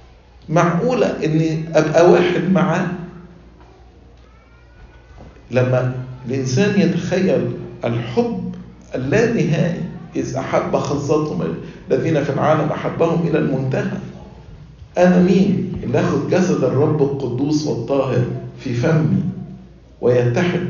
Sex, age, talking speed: male, 50-69, 85 wpm